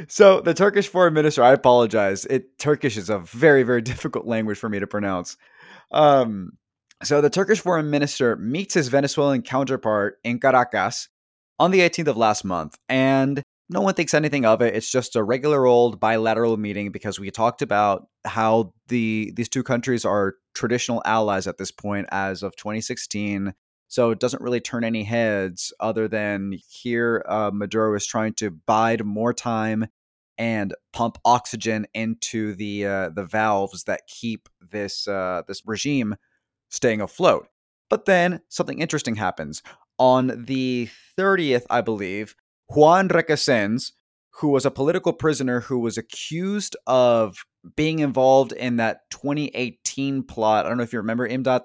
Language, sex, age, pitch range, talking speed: English, male, 20-39, 105-135 Hz, 160 wpm